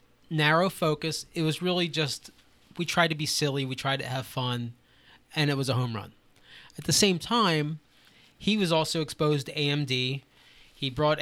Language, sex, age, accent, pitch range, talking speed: English, male, 20-39, American, 135-165 Hz, 180 wpm